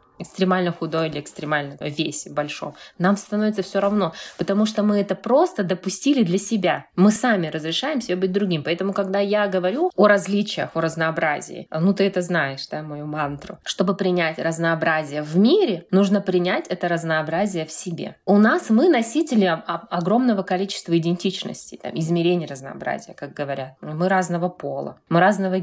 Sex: female